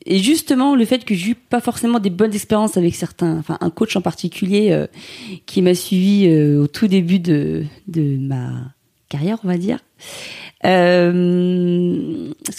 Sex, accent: female, French